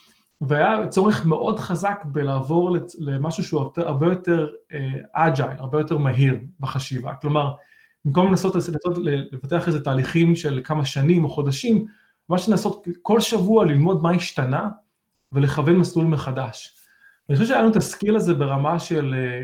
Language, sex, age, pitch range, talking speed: Hebrew, male, 30-49, 140-190 Hz, 140 wpm